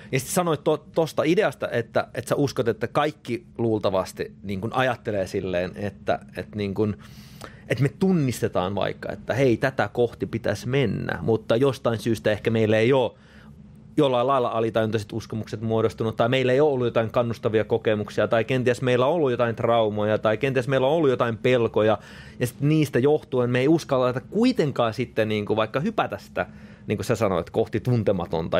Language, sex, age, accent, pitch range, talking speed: Finnish, male, 30-49, native, 110-145 Hz, 175 wpm